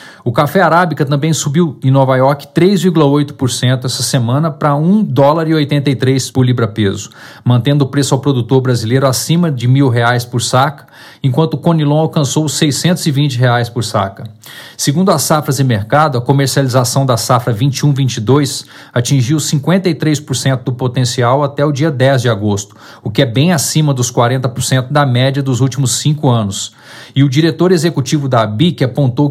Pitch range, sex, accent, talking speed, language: 125-155 Hz, male, Brazilian, 160 wpm, Portuguese